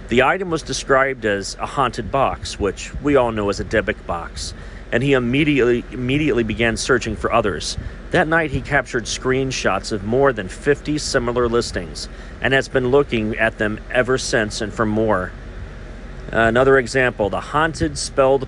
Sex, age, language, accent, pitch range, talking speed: male, 40-59, English, American, 110-155 Hz, 160 wpm